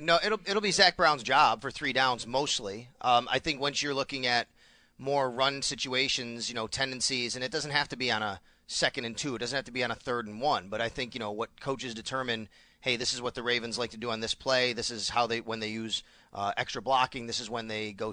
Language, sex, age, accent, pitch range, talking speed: English, male, 30-49, American, 120-145 Hz, 265 wpm